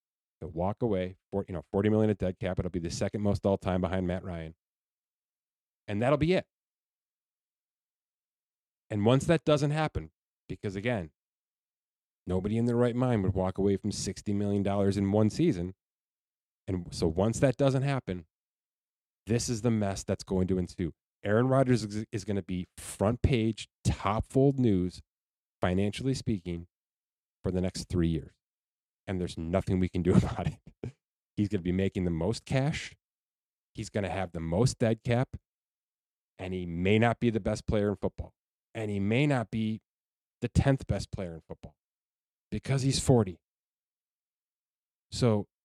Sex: male